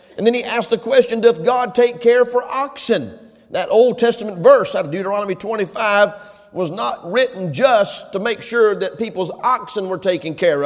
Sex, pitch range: male, 190-245 Hz